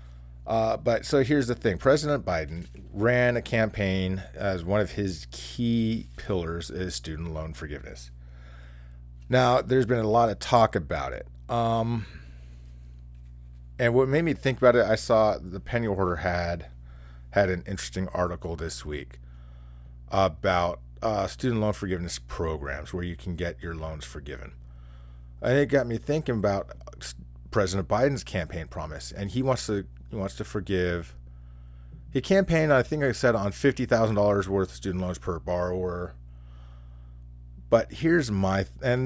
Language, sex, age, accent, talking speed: English, male, 40-59, American, 150 wpm